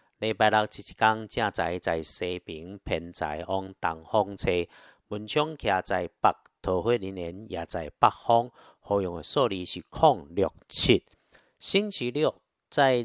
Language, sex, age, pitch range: Chinese, male, 50-69, 95-125 Hz